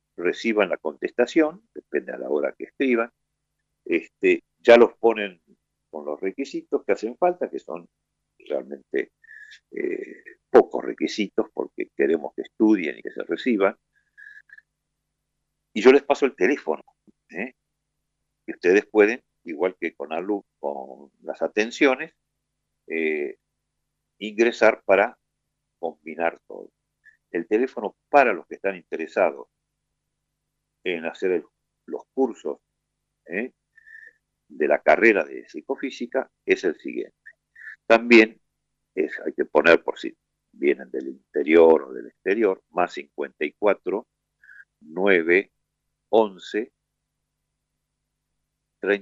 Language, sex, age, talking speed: Spanish, male, 50-69, 120 wpm